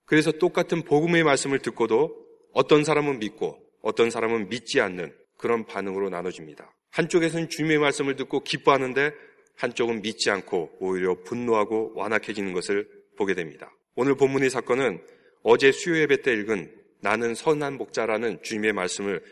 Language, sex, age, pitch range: Korean, male, 30-49, 115-165 Hz